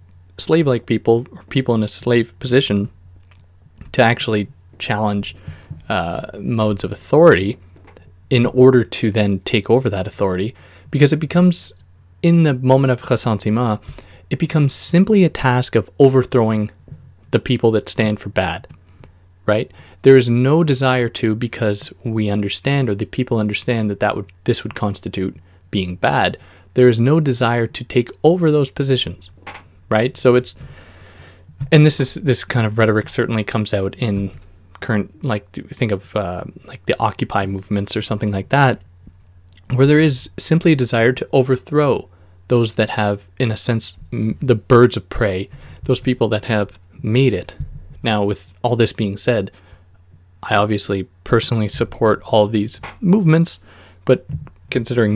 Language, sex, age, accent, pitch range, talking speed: English, male, 20-39, American, 95-125 Hz, 150 wpm